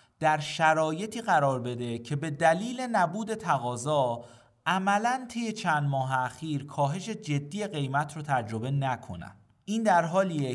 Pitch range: 130-185 Hz